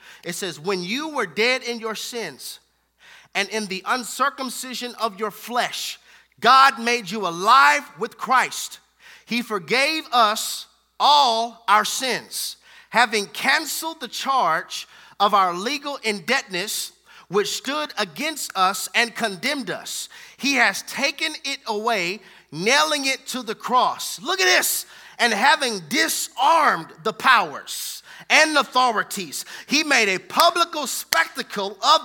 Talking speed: 130 wpm